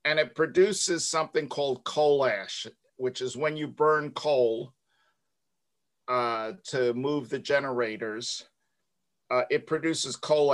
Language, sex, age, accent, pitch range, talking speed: English, male, 50-69, American, 125-155 Hz, 125 wpm